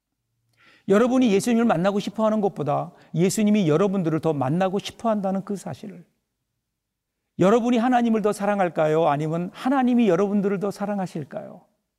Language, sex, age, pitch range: Korean, male, 50-69, 175-220 Hz